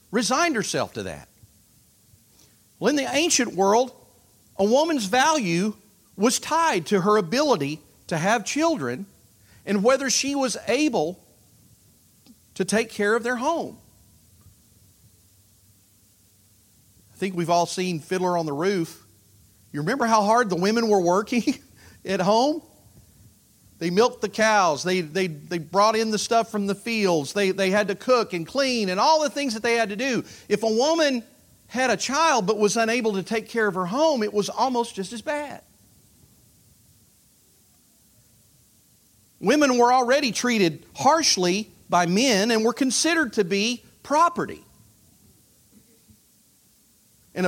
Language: English